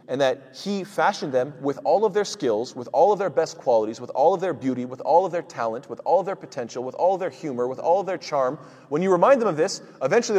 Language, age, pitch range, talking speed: English, 30-49, 115-160 Hz, 275 wpm